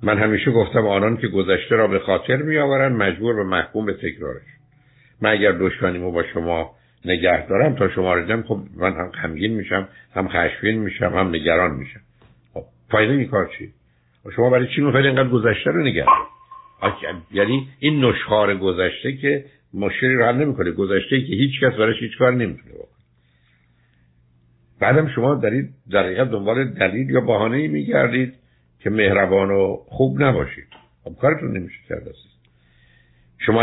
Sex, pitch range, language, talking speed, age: male, 90-130 Hz, Persian, 145 wpm, 60-79